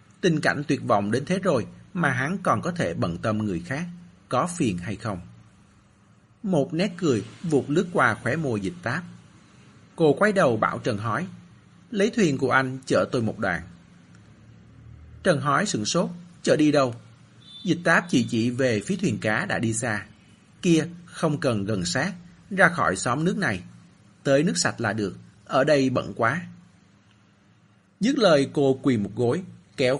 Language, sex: Vietnamese, male